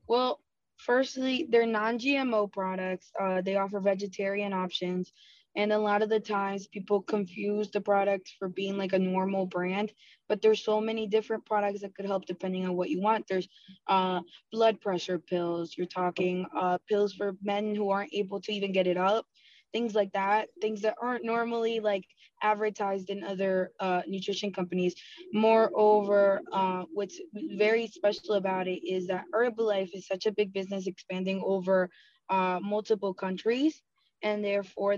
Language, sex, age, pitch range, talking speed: English, female, 20-39, 185-210 Hz, 165 wpm